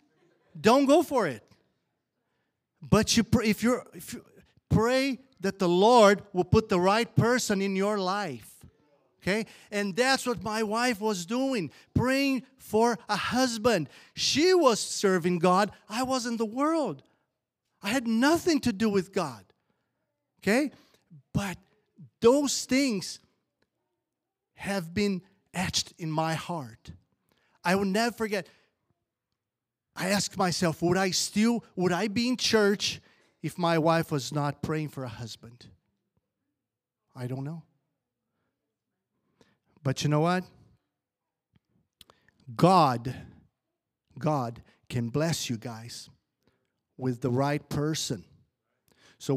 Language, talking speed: English, 125 wpm